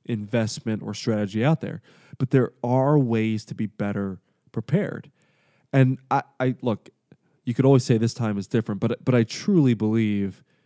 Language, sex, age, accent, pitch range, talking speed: English, male, 20-39, American, 110-140 Hz, 170 wpm